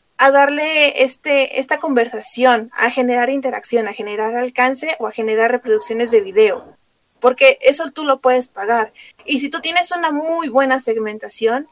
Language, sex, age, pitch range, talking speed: Spanish, female, 30-49, 245-295 Hz, 160 wpm